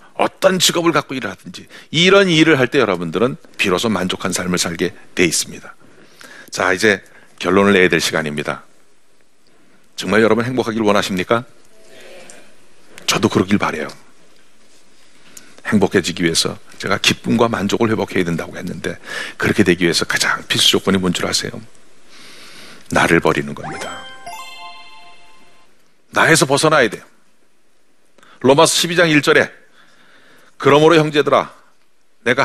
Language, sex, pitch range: Korean, male, 105-160 Hz